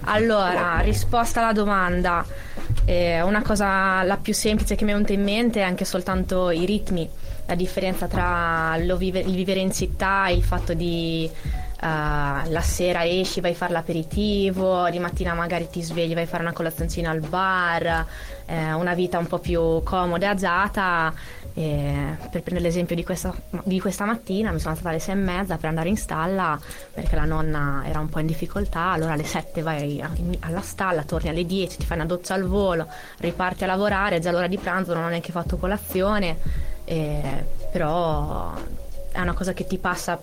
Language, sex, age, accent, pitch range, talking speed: Italian, female, 20-39, native, 165-190 Hz, 190 wpm